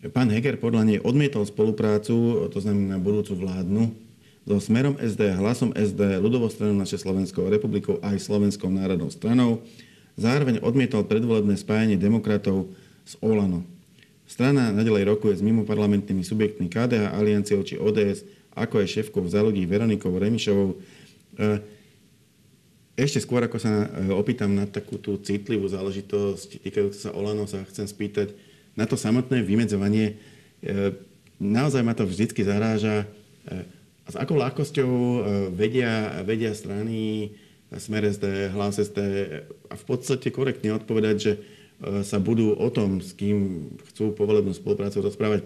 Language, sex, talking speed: Slovak, male, 130 wpm